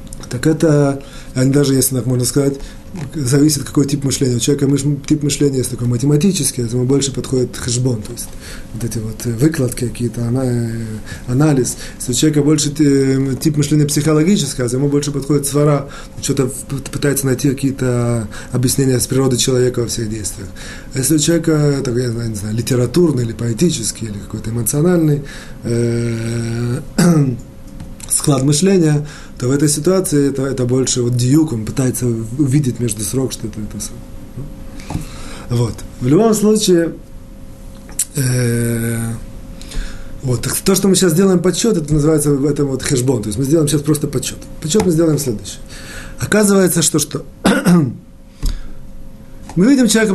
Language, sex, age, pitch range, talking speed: Russian, male, 20-39, 120-155 Hz, 150 wpm